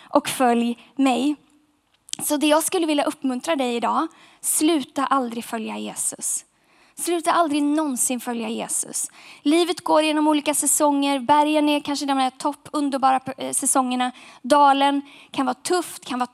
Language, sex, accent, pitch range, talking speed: Swedish, female, native, 250-310 Hz, 140 wpm